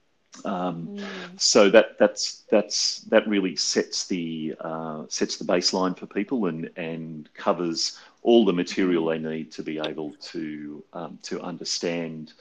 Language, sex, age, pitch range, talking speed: English, male, 40-59, 80-100 Hz, 145 wpm